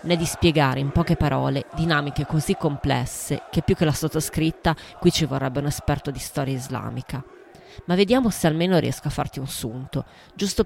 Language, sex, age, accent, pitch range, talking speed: Italian, female, 20-39, native, 135-175 Hz, 180 wpm